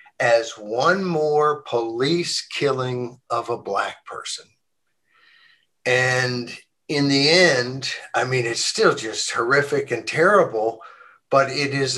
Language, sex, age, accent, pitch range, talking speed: English, male, 50-69, American, 135-170 Hz, 120 wpm